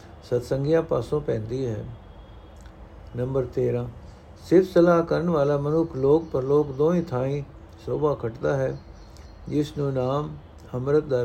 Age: 60-79